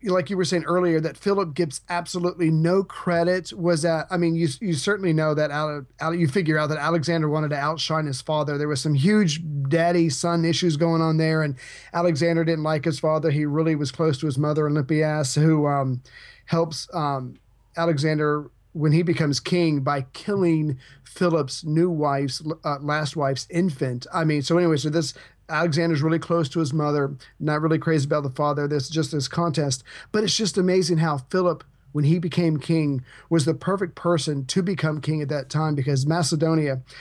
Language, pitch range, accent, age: English, 150-170 Hz, American, 40-59